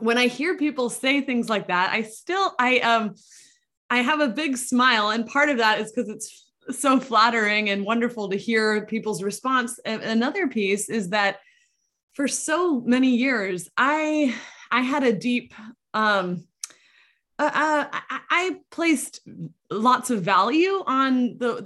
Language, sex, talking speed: English, female, 150 wpm